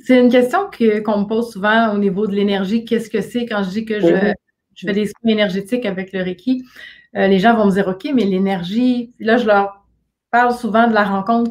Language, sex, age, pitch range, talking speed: French, female, 30-49, 200-240 Hz, 235 wpm